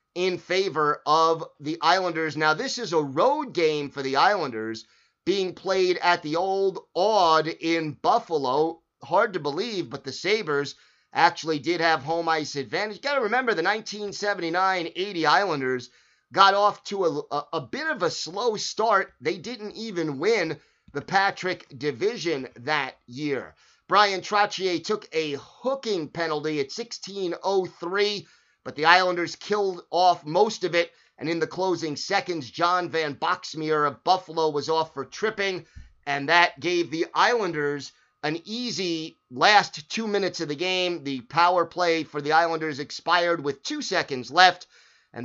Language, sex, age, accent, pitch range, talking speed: English, male, 30-49, American, 155-200 Hz, 155 wpm